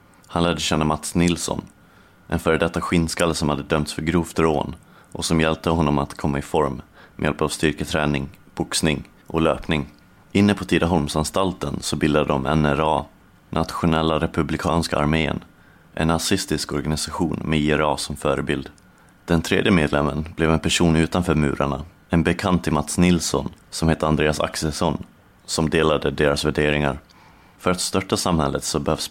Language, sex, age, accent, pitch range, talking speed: Swedish, male, 30-49, native, 75-85 Hz, 150 wpm